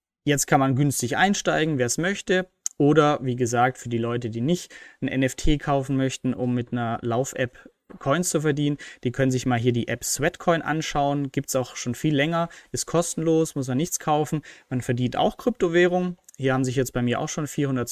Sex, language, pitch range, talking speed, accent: male, German, 125-165 Hz, 205 wpm, German